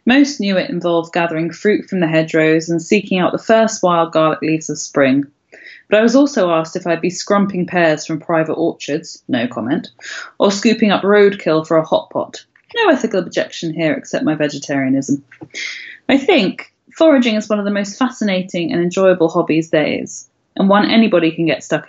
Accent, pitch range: British, 160-210 Hz